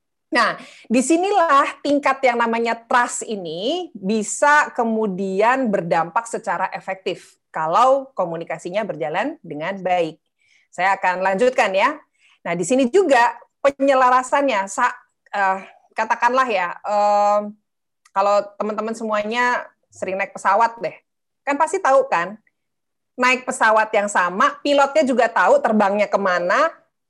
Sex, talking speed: female, 105 wpm